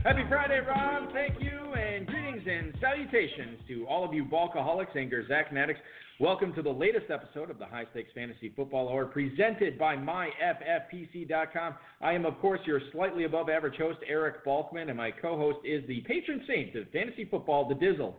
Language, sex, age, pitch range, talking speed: English, male, 40-59, 140-180 Hz, 180 wpm